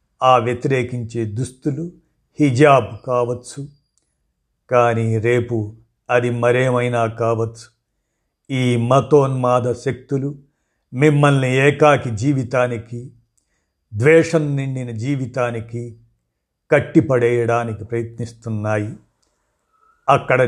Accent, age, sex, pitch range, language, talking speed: native, 50-69, male, 115-140 Hz, Telugu, 65 wpm